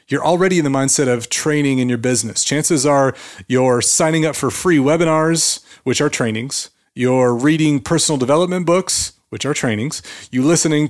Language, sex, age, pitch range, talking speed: English, male, 30-49, 130-190 Hz, 170 wpm